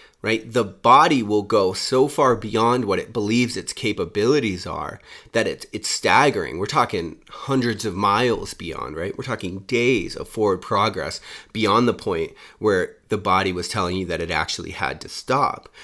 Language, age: English, 30-49